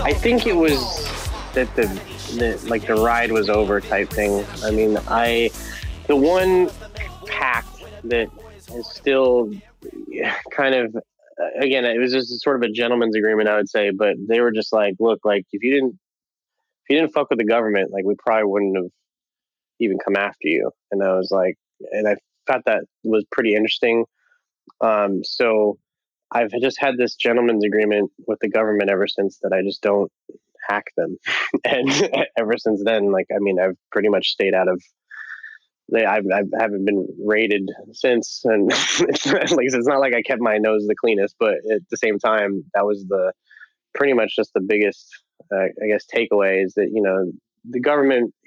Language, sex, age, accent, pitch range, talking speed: English, male, 20-39, American, 100-120 Hz, 180 wpm